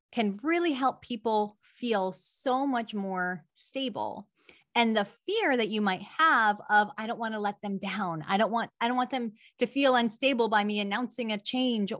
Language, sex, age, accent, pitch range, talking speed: English, female, 20-39, American, 195-245 Hz, 195 wpm